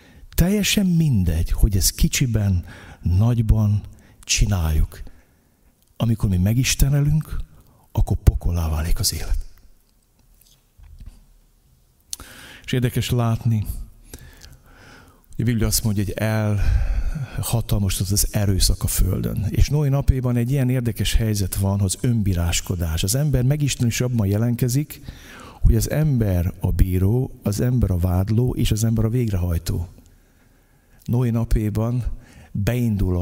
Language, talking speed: Hungarian, 110 wpm